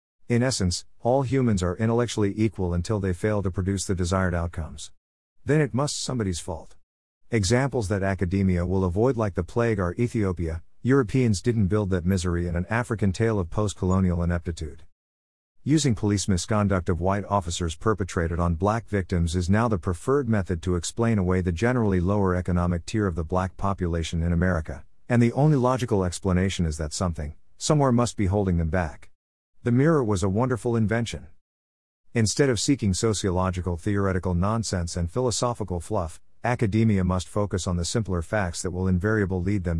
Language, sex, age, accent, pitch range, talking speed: English, male, 50-69, American, 90-110 Hz, 170 wpm